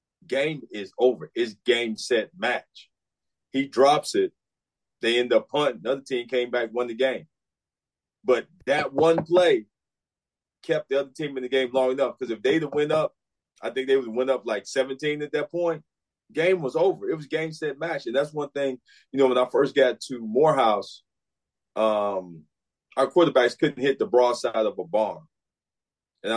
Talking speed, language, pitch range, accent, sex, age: 190 wpm, English, 125-170 Hz, American, male, 30-49